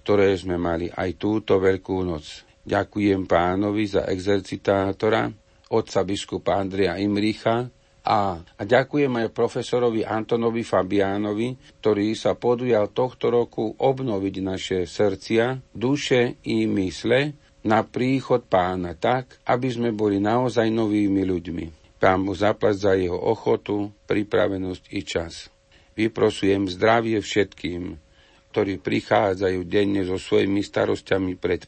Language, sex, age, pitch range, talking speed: Slovak, male, 50-69, 90-110 Hz, 115 wpm